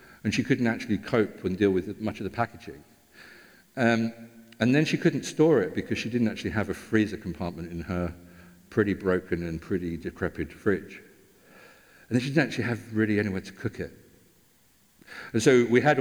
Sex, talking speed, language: male, 185 wpm, English